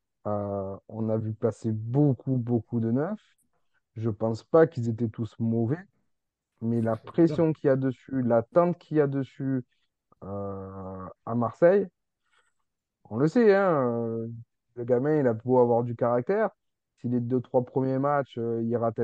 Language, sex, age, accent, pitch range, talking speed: French, male, 20-39, French, 115-135 Hz, 170 wpm